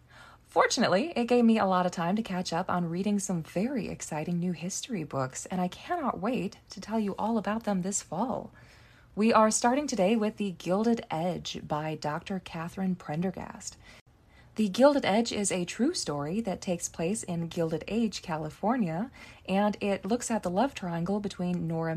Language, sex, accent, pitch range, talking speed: English, female, American, 165-225 Hz, 180 wpm